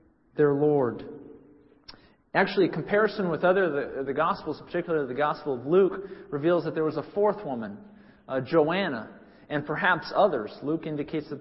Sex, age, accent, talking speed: male, 40-59, American, 160 wpm